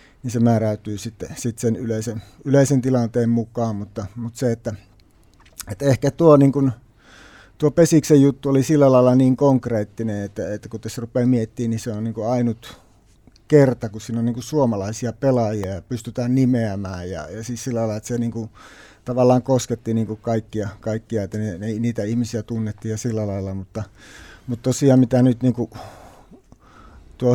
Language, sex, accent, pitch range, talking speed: Finnish, male, native, 105-125 Hz, 150 wpm